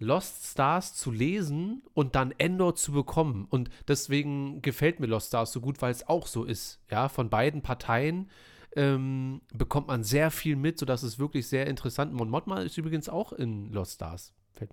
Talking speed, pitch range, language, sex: 185 wpm, 115-145 Hz, German, male